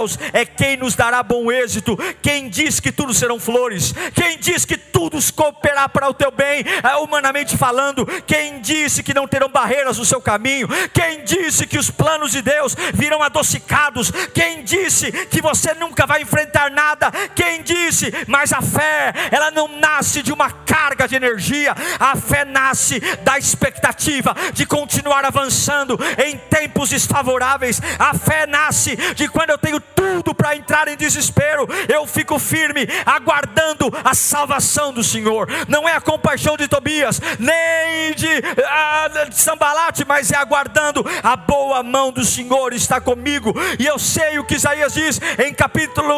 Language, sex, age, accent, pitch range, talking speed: Portuguese, male, 50-69, Brazilian, 255-300 Hz, 160 wpm